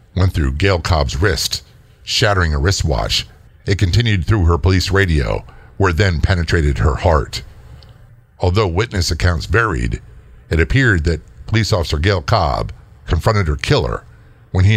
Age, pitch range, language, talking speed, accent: 50-69, 85-105 Hz, English, 145 wpm, American